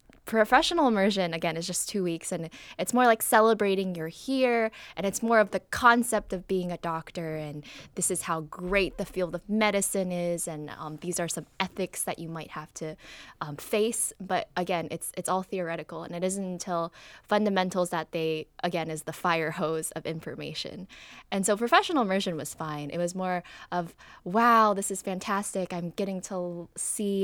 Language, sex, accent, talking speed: English, female, American, 185 wpm